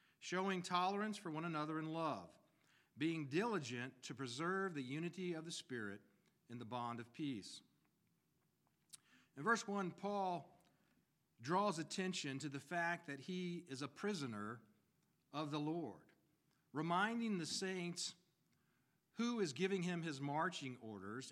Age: 50-69